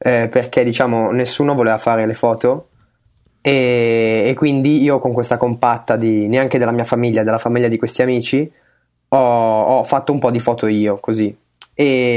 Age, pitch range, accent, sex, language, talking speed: 20-39, 115-135 Hz, native, male, Italian, 175 wpm